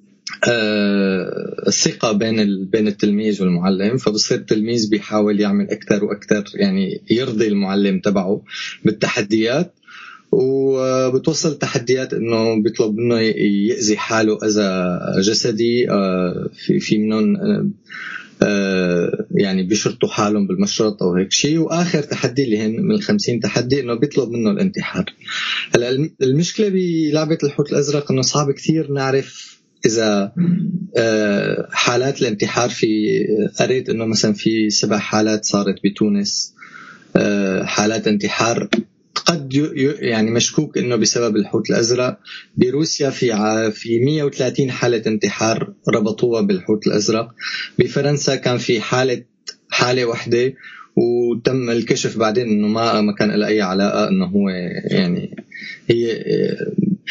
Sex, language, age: male, Arabic, 20-39